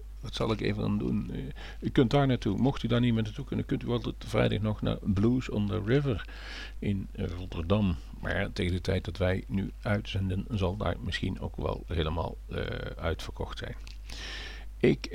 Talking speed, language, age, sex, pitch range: 195 wpm, Dutch, 50-69, male, 90-110 Hz